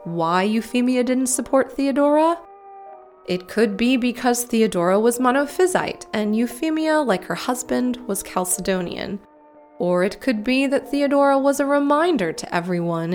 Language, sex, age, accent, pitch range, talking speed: English, female, 20-39, American, 185-290 Hz, 135 wpm